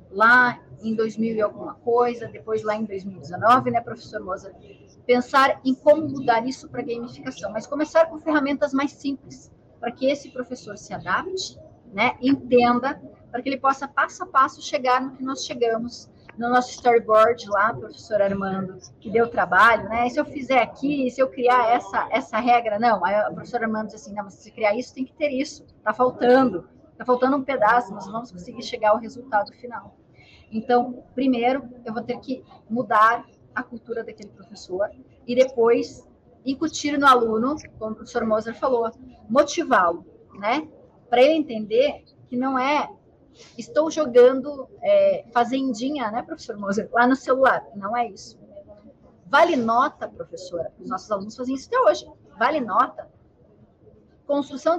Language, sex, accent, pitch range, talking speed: Portuguese, female, Brazilian, 225-275 Hz, 165 wpm